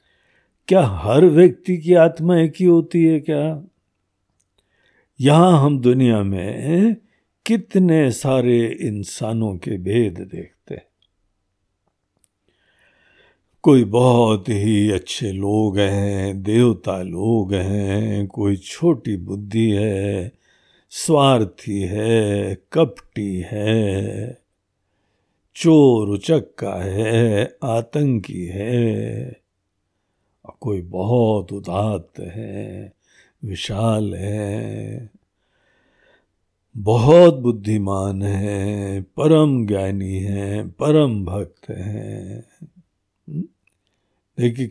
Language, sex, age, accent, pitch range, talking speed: Hindi, male, 60-79, native, 100-145 Hz, 80 wpm